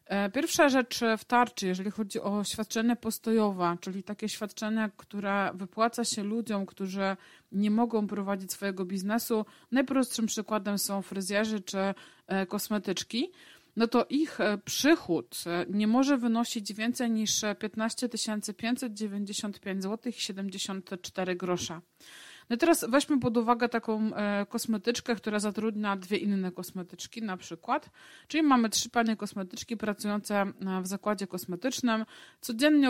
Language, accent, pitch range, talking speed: Polish, native, 200-230 Hz, 120 wpm